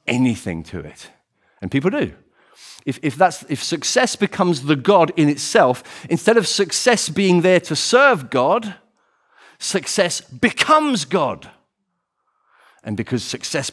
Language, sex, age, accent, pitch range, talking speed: English, male, 40-59, British, 120-180 Hz, 130 wpm